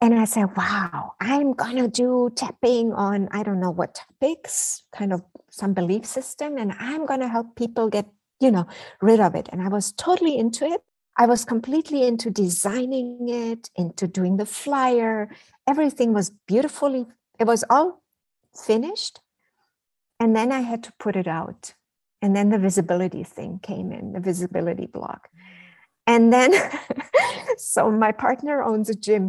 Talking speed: 165 wpm